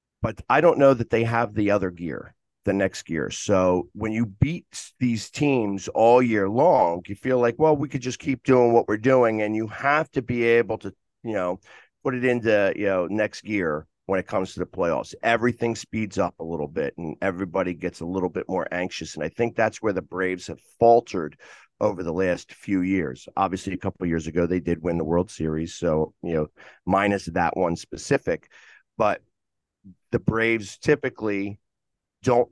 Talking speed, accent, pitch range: 200 wpm, American, 95-120 Hz